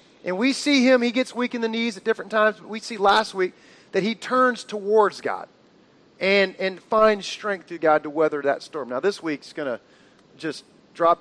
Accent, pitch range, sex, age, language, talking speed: American, 190-245 Hz, male, 40-59, English, 215 wpm